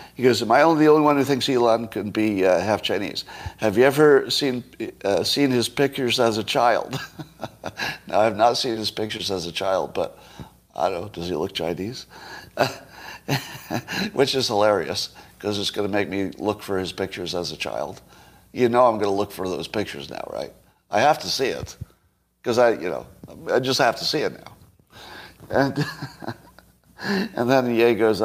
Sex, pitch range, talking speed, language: male, 100-135 Hz, 200 wpm, English